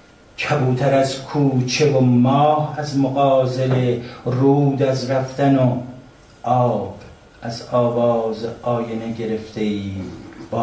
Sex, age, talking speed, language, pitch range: male, 50-69, 100 wpm, Persian, 115-150 Hz